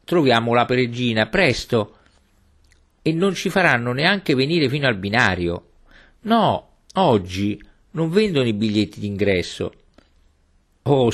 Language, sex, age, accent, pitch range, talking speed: Italian, male, 50-69, native, 90-130 Hz, 115 wpm